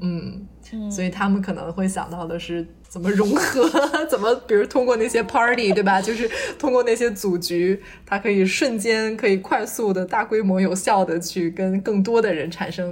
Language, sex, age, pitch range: Chinese, female, 20-39, 175-205 Hz